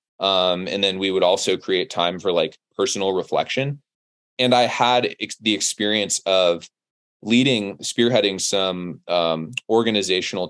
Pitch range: 85-110 Hz